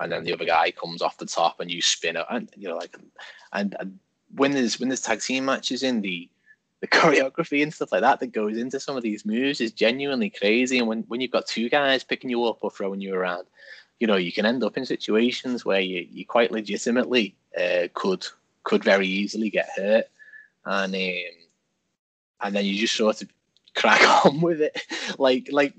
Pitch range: 95-130 Hz